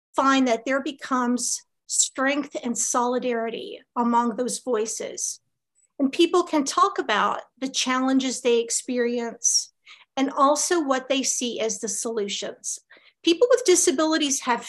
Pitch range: 245-295 Hz